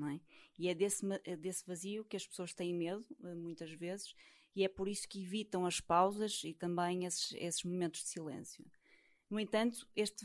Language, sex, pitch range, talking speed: Portuguese, female, 180-215 Hz, 175 wpm